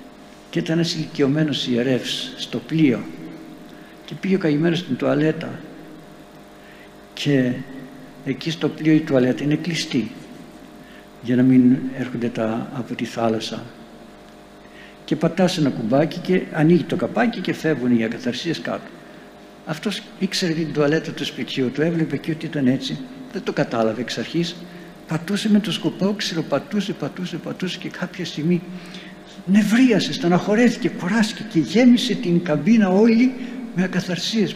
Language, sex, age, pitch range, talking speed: Greek, male, 60-79, 130-190 Hz, 135 wpm